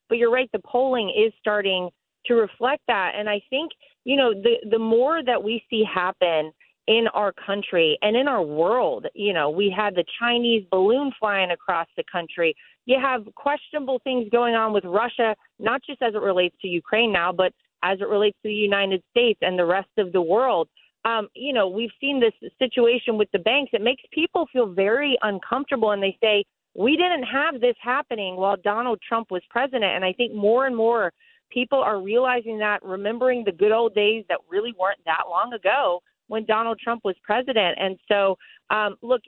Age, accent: 30-49, American